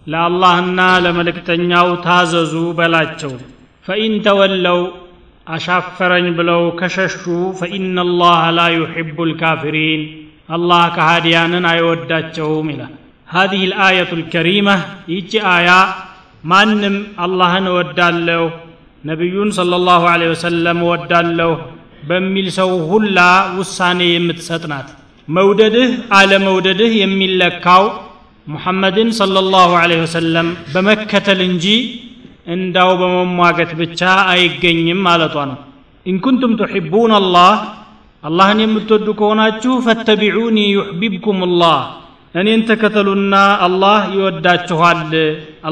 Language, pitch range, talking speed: Amharic, 170-195 Hz, 90 wpm